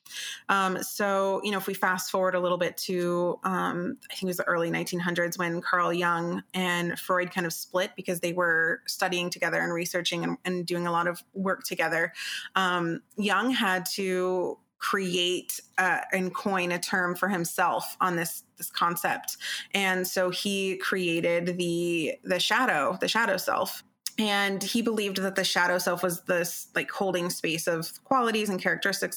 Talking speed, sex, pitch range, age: 175 wpm, female, 180-200 Hz, 20-39